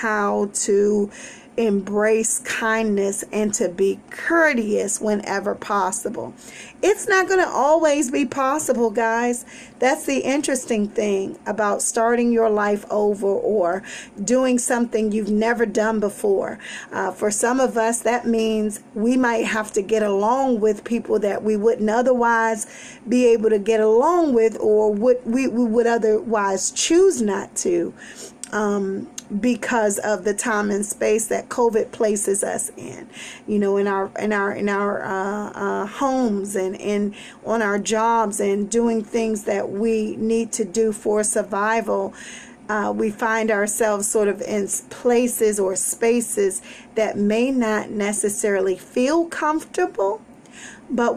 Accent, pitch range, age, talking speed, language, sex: American, 210-245 Hz, 40-59, 145 wpm, English, female